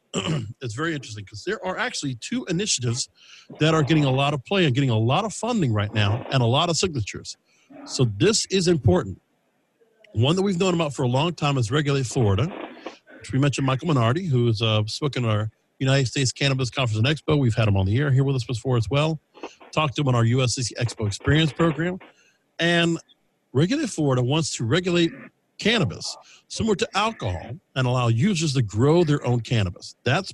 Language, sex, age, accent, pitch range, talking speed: English, male, 50-69, American, 125-160 Hz, 200 wpm